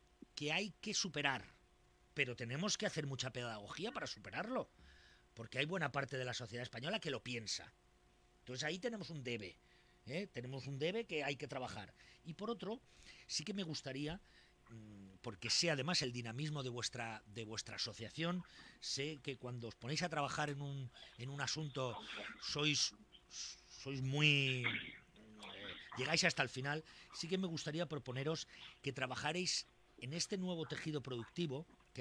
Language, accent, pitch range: Spanish, Spanish, 120-175 Hz